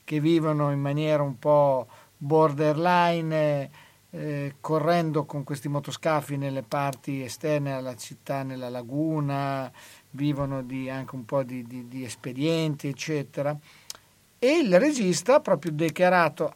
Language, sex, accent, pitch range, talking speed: Italian, male, native, 140-180 Hz, 125 wpm